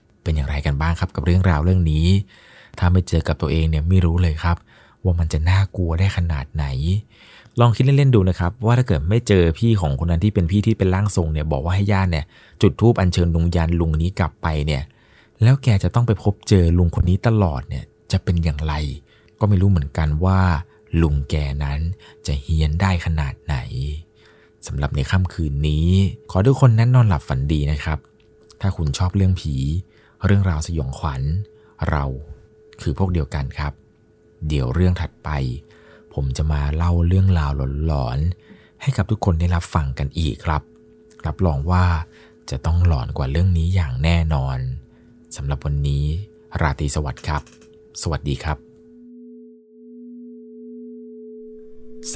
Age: 20-39